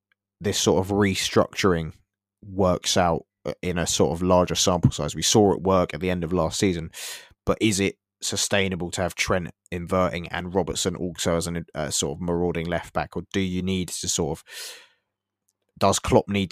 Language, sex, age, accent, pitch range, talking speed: English, male, 20-39, British, 85-100 Hz, 185 wpm